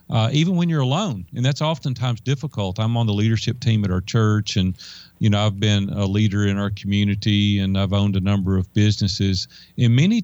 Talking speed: 210 wpm